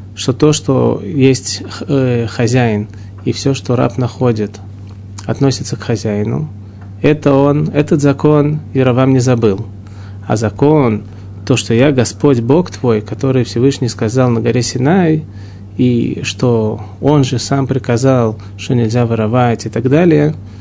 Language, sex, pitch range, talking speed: Russian, male, 100-135 Hz, 135 wpm